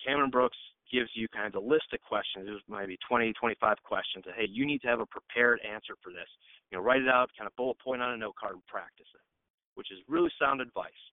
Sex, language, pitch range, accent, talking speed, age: male, English, 105-130 Hz, American, 260 wpm, 30-49